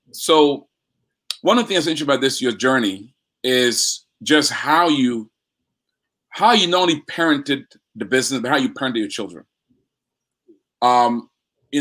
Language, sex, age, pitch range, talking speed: English, male, 40-59, 125-160 Hz, 150 wpm